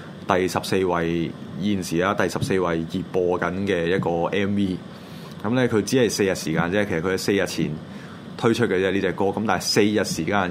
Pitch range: 85-110 Hz